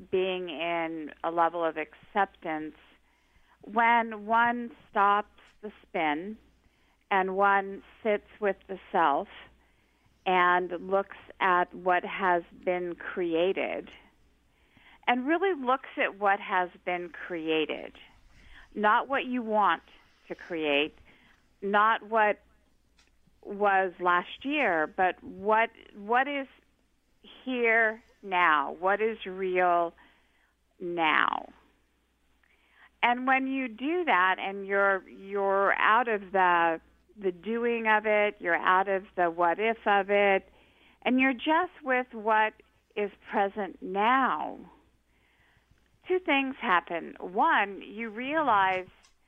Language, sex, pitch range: English, female, 180-230 Hz